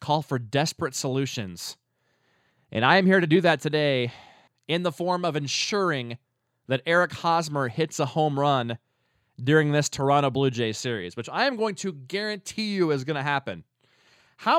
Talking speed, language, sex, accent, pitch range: 175 wpm, English, male, American, 125-170 Hz